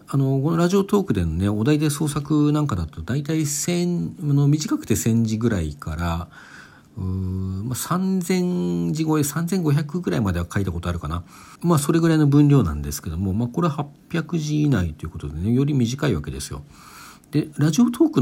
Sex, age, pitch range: male, 50-69, 90-150 Hz